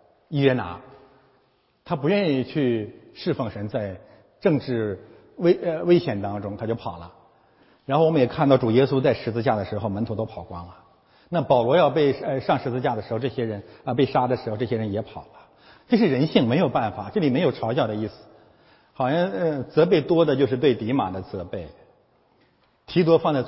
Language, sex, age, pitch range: Chinese, male, 50-69, 105-140 Hz